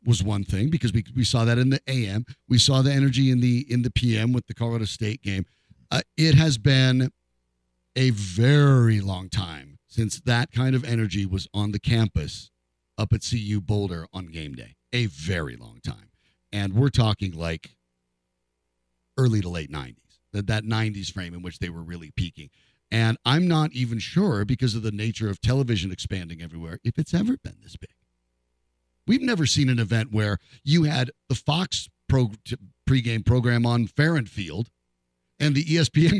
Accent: American